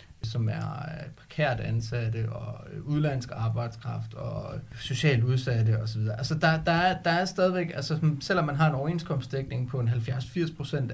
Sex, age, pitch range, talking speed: male, 30-49, 115-145 Hz, 150 wpm